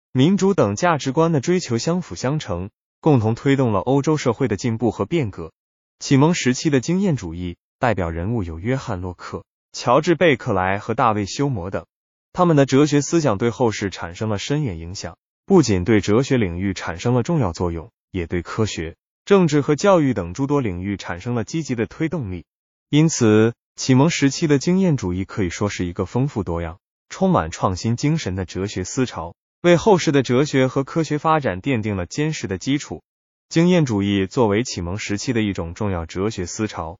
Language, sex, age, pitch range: Chinese, male, 20-39, 100-145 Hz